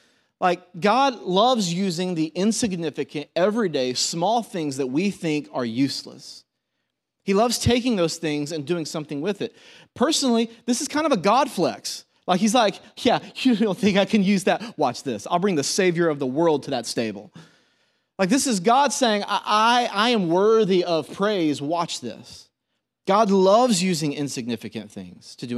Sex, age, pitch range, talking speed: male, 30-49, 150-225 Hz, 175 wpm